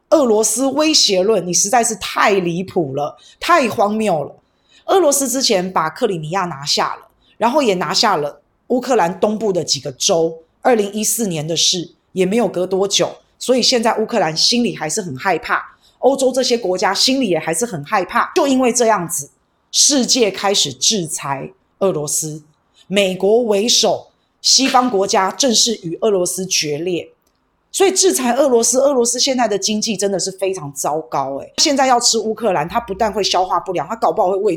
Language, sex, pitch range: Chinese, female, 175-245 Hz